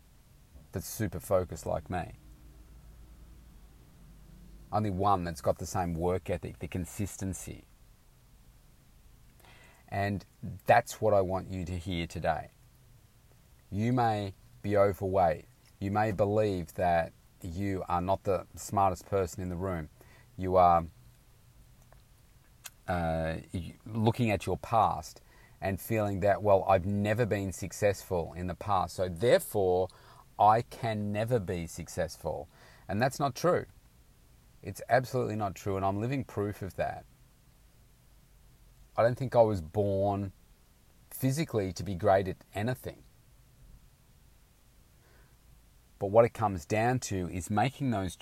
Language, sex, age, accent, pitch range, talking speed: English, male, 30-49, Australian, 90-110 Hz, 125 wpm